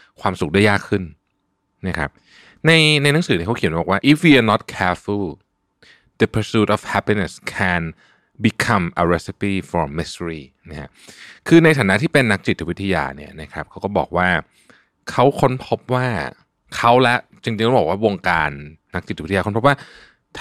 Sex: male